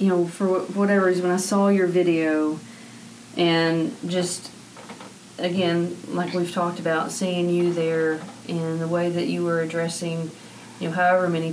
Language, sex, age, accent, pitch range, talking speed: English, female, 40-59, American, 160-180 Hz, 160 wpm